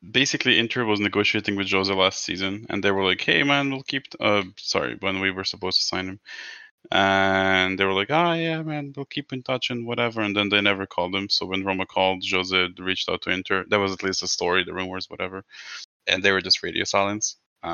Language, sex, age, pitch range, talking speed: English, male, 20-39, 95-110 Hz, 240 wpm